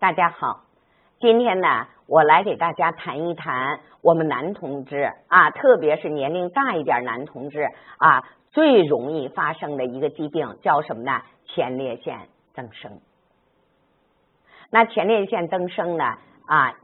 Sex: female